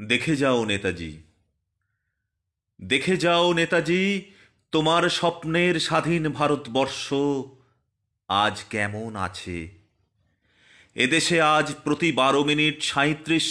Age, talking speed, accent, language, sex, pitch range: 30-49, 85 wpm, native, Bengali, male, 120-175 Hz